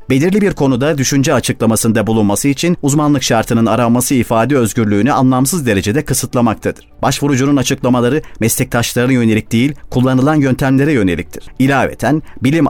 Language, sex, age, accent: Turkish, male, 40-59, native